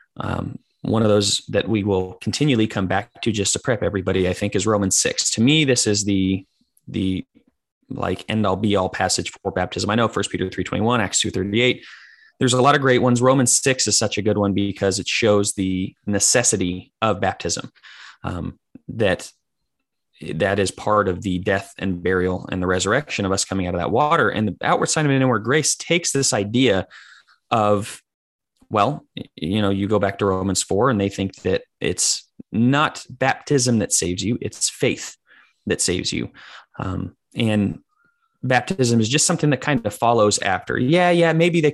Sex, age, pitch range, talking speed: male, 20-39, 95-125 Hz, 190 wpm